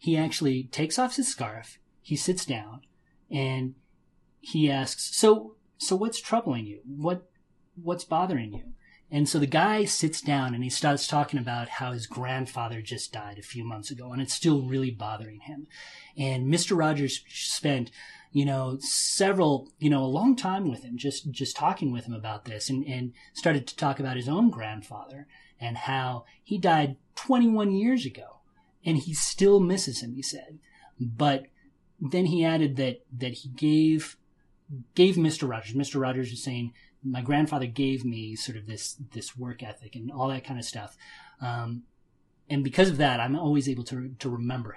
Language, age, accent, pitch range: English, 30-49, American, 125-155 Hz